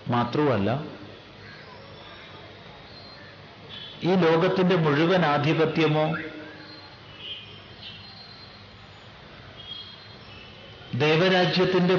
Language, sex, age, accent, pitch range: Malayalam, male, 50-69, native, 105-150 Hz